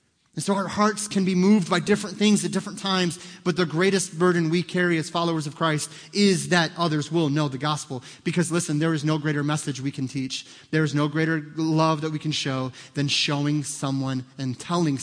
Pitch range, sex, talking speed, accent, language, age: 145-185 Hz, male, 215 wpm, American, English, 30-49